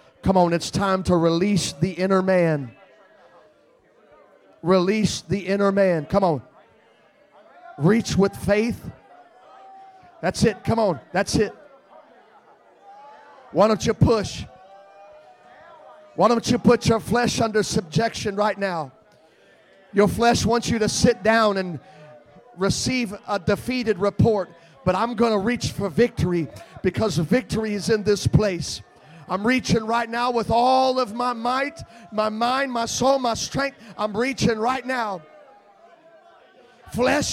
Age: 40-59